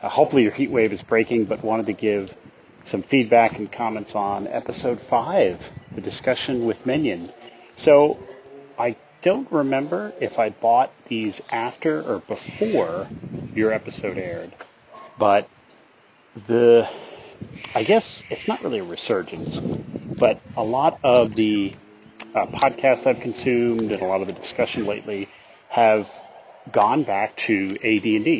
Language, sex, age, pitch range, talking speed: English, male, 30-49, 100-120 Hz, 140 wpm